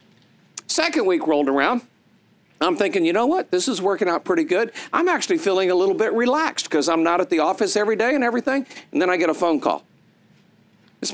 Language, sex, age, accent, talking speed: English, male, 50-69, American, 215 wpm